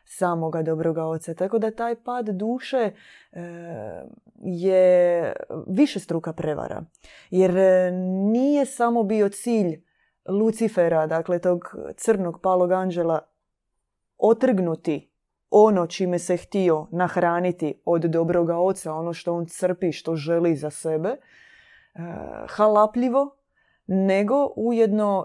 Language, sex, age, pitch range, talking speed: Croatian, female, 20-39, 170-220 Hz, 100 wpm